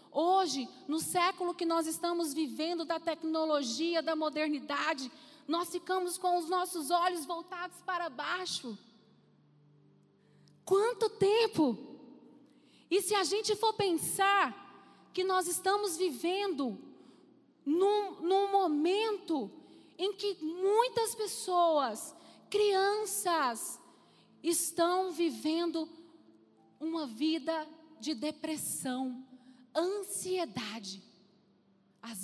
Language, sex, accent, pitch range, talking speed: Portuguese, female, Brazilian, 290-375 Hz, 90 wpm